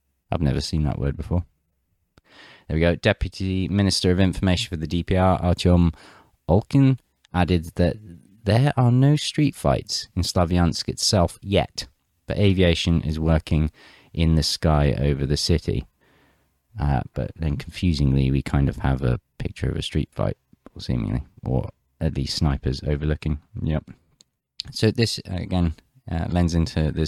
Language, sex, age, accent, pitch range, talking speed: English, male, 20-39, British, 75-95 Hz, 150 wpm